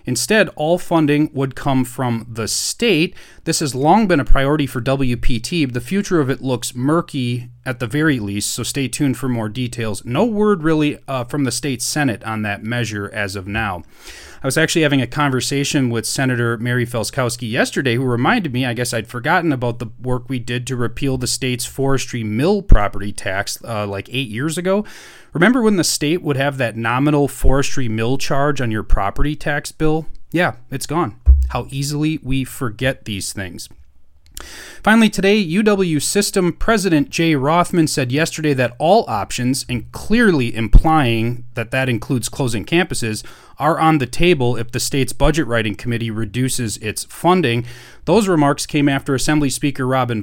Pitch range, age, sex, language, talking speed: 115-150 Hz, 30-49, male, English, 175 wpm